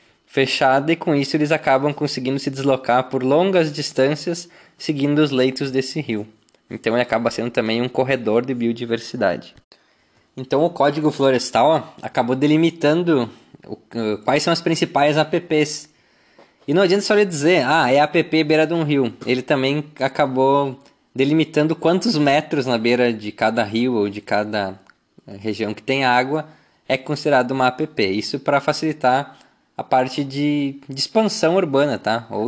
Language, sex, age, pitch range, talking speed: Portuguese, male, 20-39, 125-155 Hz, 155 wpm